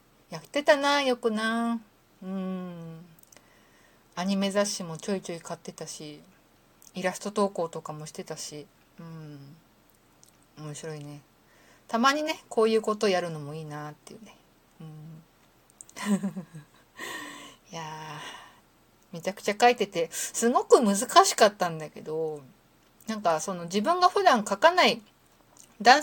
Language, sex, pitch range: Japanese, female, 165-235 Hz